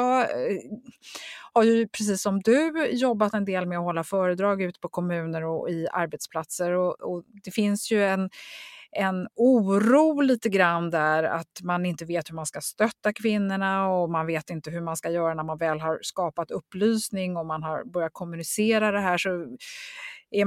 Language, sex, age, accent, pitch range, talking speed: Swedish, female, 30-49, native, 170-225 Hz, 175 wpm